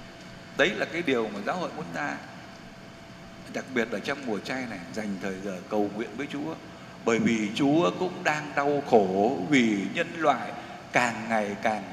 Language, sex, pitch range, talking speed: Vietnamese, male, 140-195 Hz, 180 wpm